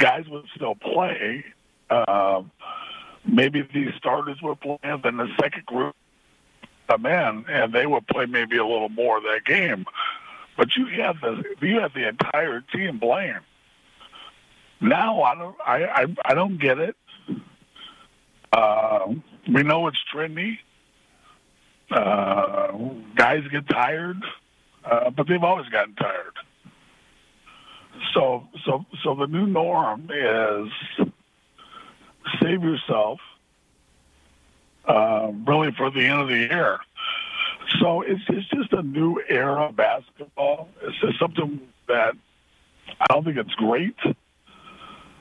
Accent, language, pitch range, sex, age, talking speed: American, English, 130-195 Hz, male, 60-79, 130 wpm